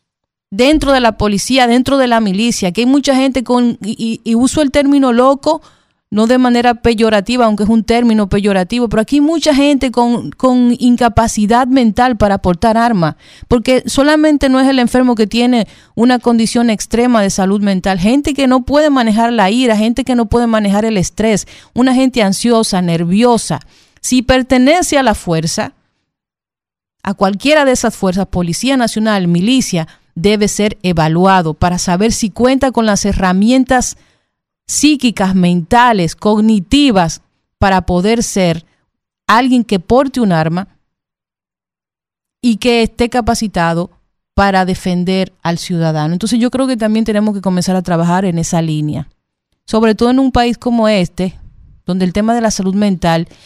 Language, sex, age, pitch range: Spanish, female, 40-59, 190-245 Hz